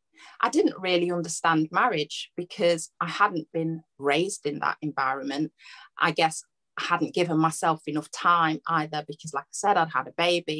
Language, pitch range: English, 150-175 Hz